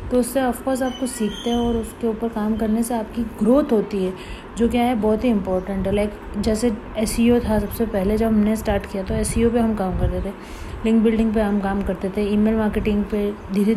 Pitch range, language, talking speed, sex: 210-240 Hz, Hindi, 225 wpm, female